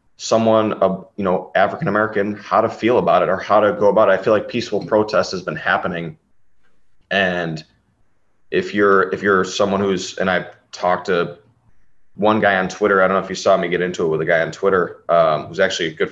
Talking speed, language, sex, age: 220 wpm, English, male, 30-49